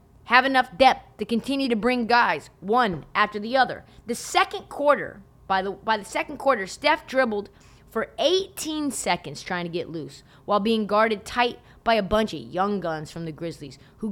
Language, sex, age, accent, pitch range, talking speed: English, female, 20-39, American, 195-275 Hz, 185 wpm